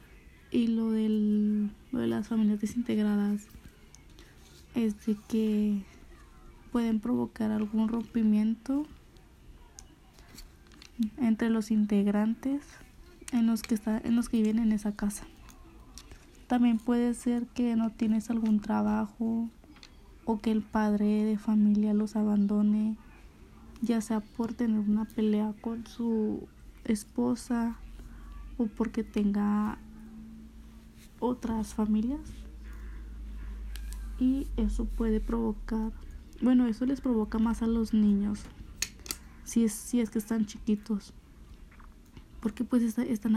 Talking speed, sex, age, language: 105 wpm, female, 20-39, Spanish